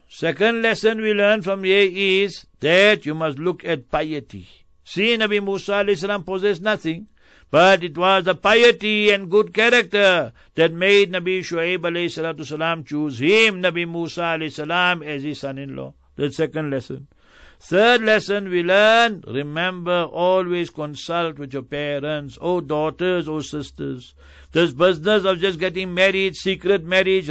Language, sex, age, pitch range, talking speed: English, male, 60-79, 160-195 Hz, 140 wpm